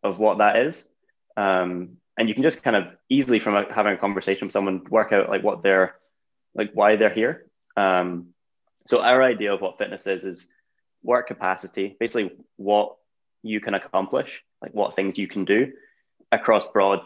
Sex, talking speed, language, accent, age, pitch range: male, 185 wpm, English, British, 10-29, 95-105 Hz